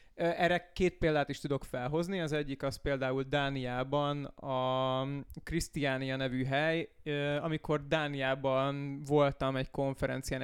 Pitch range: 135-160 Hz